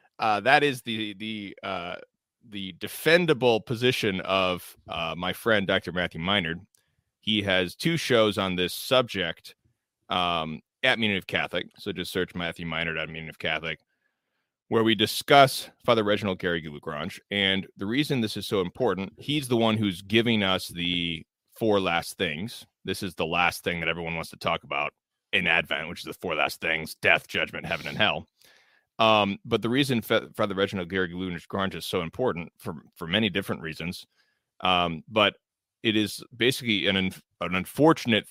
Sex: male